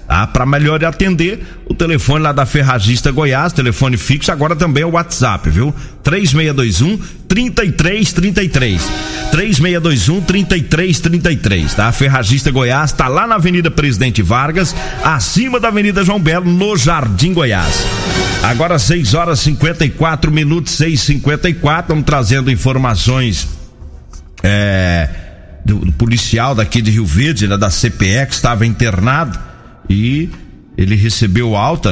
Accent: Brazilian